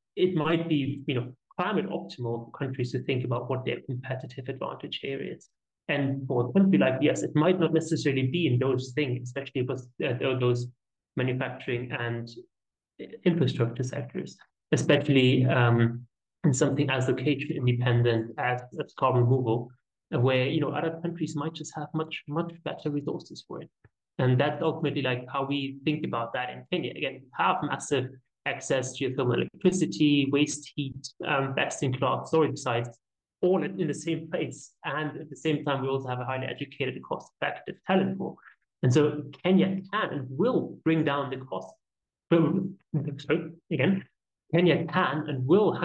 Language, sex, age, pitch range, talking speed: English, male, 30-49, 125-160 Hz, 170 wpm